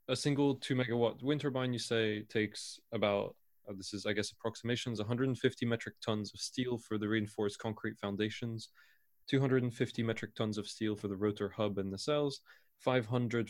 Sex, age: male, 20-39